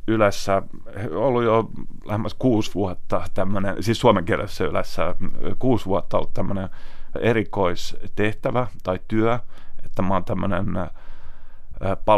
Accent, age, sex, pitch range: native, 30-49, male, 90-105 Hz